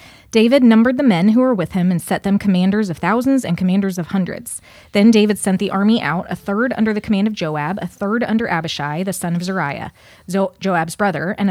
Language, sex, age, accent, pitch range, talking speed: English, female, 20-39, American, 175-215 Hz, 220 wpm